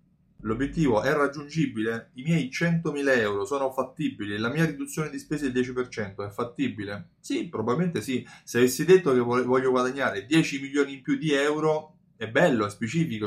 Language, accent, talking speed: Italian, native, 165 wpm